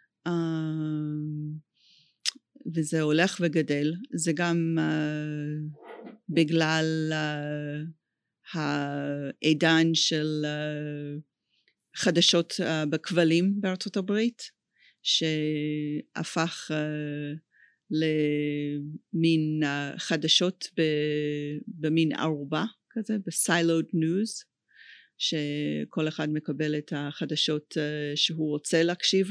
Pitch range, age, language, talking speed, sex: 150-165 Hz, 40-59, Hebrew, 70 wpm, female